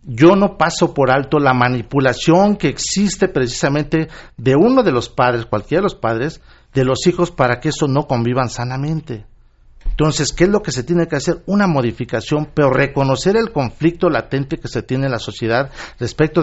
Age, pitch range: 50-69, 120-155 Hz